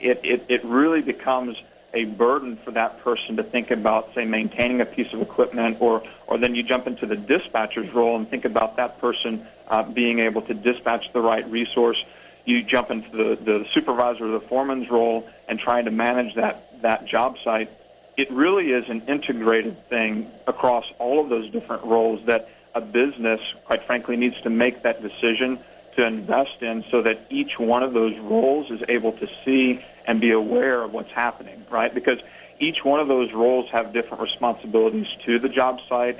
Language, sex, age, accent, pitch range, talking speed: English, male, 40-59, American, 115-130 Hz, 190 wpm